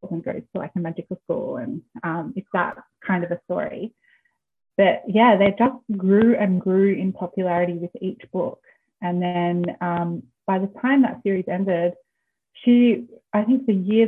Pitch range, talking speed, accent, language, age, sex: 180-230 Hz, 175 wpm, Australian, English, 30-49, female